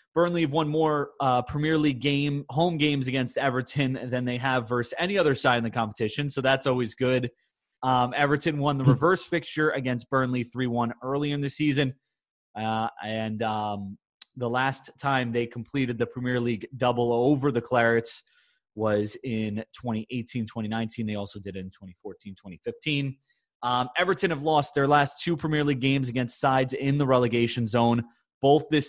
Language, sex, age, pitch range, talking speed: English, male, 20-39, 115-145 Hz, 170 wpm